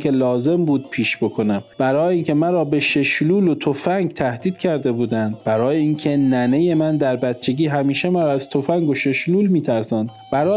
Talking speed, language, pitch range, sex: 170 wpm, Persian, 125-165 Hz, male